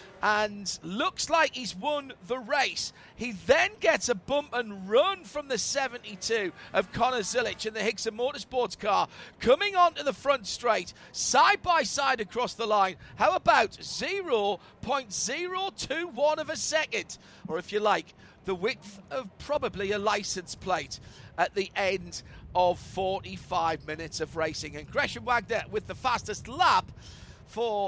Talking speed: 150 wpm